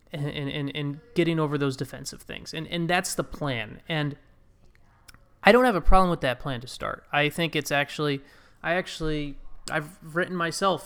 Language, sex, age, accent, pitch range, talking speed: English, male, 30-49, American, 135-165 Hz, 180 wpm